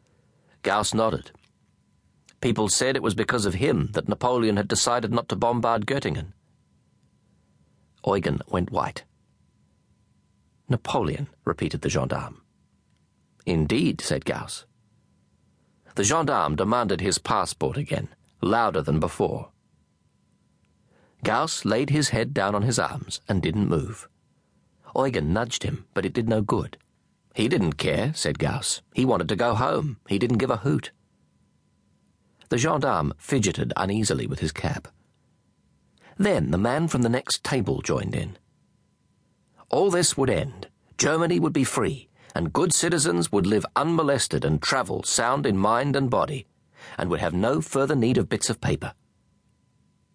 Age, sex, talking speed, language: 40-59, male, 140 wpm, English